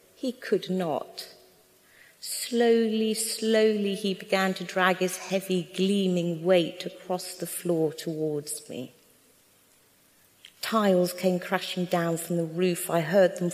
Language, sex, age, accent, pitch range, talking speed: English, female, 40-59, British, 175-220 Hz, 125 wpm